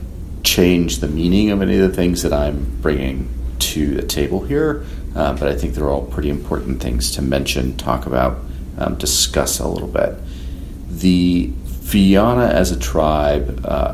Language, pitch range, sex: English, 65-85 Hz, male